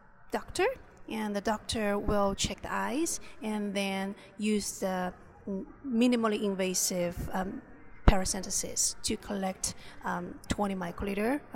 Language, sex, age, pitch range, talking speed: English, female, 30-49, 195-230 Hz, 115 wpm